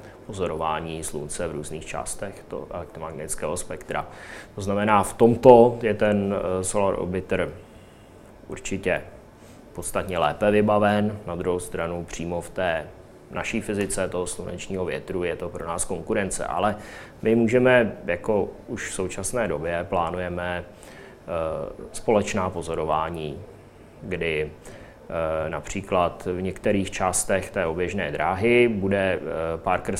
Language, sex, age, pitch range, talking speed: Czech, male, 20-39, 85-100 Hz, 110 wpm